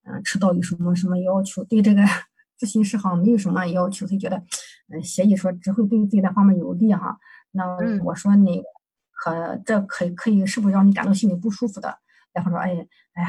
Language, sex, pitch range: Chinese, female, 190-220 Hz